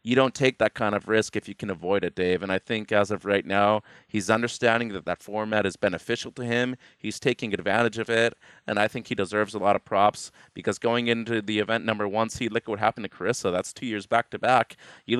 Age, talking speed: 30-49, 245 wpm